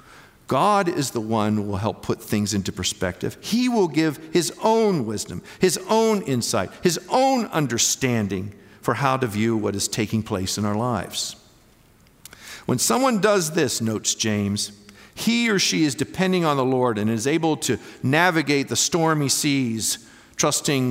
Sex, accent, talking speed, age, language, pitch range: male, American, 165 wpm, 50-69, English, 115-160 Hz